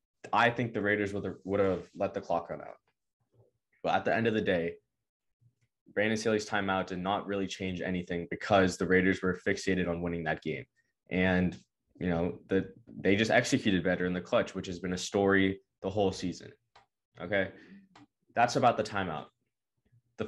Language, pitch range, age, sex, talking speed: English, 90-110 Hz, 20-39, male, 180 wpm